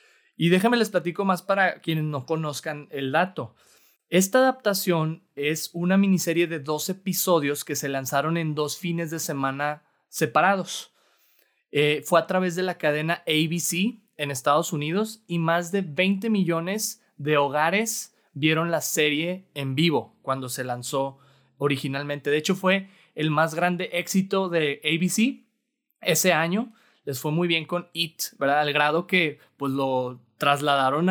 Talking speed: 150 wpm